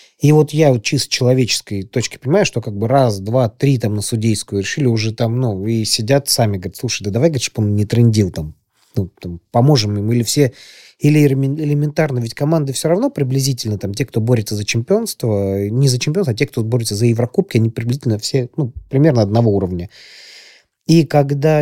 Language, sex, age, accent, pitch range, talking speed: Russian, male, 30-49, native, 105-135 Hz, 190 wpm